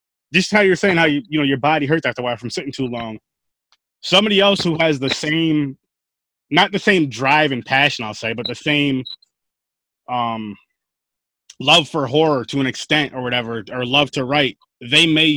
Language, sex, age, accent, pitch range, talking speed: English, male, 20-39, American, 130-160 Hz, 195 wpm